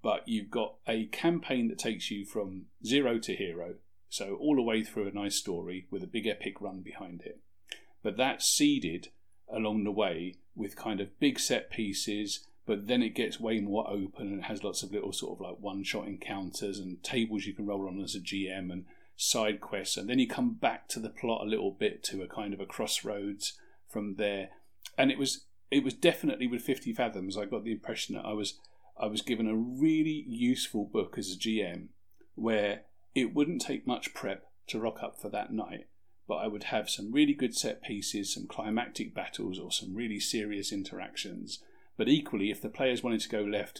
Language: English